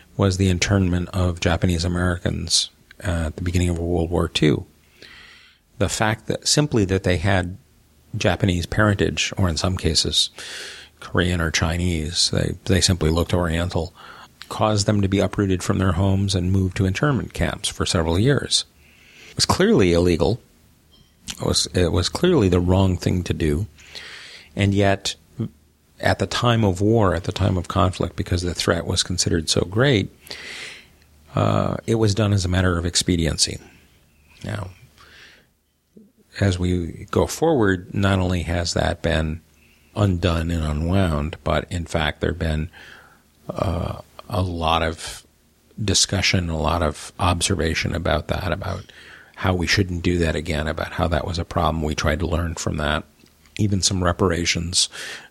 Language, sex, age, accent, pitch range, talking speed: English, male, 40-59, American, 80-100 Hz, 155 wpm